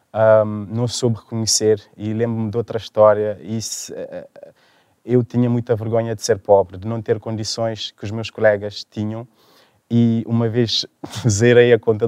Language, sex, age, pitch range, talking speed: Portuguese, male, 20-39, 105-115 Hz, 165 wpm